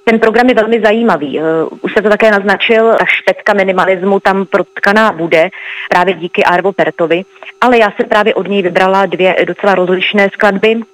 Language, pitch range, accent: Czech, 175-210 Hz, native